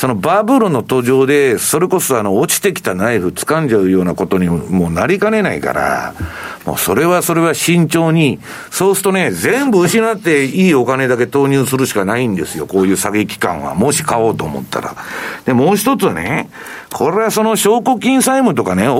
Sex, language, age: male, Japanese, 50-69